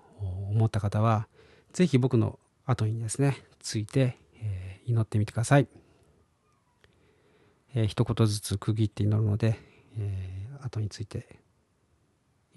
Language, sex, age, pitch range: Japanese, male, 40-59, 105-130 Hz